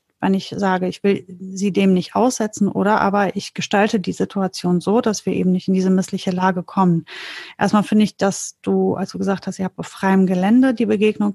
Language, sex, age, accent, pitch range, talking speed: German, female, 30-49, German, 190-215 Hz, 215 wpm